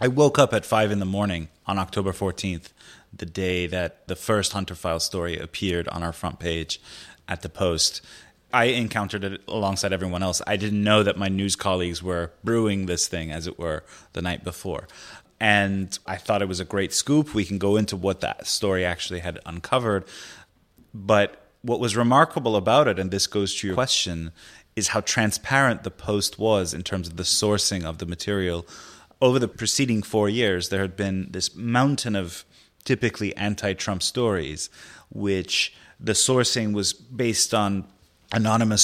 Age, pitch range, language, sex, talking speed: 30-49, 90-110 Hz, English, male, 180 wpm